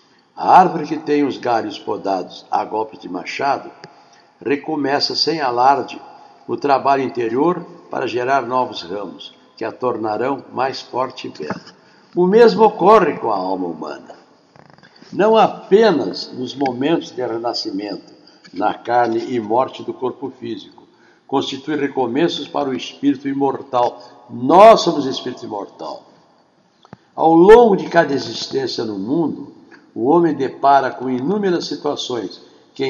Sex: male